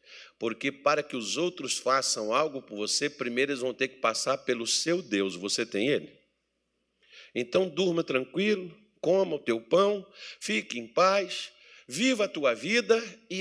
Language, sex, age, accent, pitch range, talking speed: Portuguese, male, 50-69, Brazilian, 140-225 Hz, 160 wpm